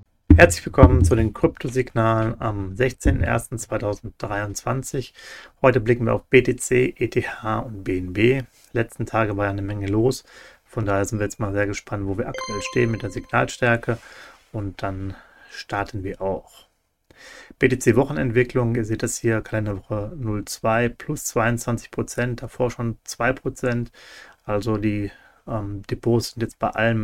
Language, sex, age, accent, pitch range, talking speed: German, male, 30-49, German, 100-120 Hz, 140 wpm